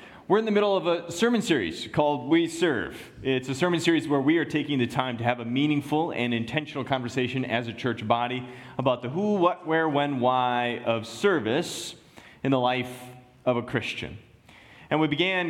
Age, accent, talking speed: 30-49, American, 195 wpm